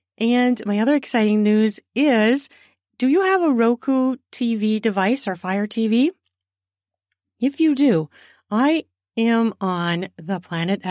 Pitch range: 185-260 Hz